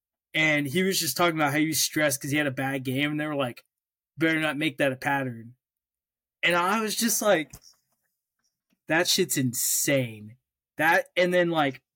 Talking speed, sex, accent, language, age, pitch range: 190 wpm, male, American, English, 20-39, 135-170 Hz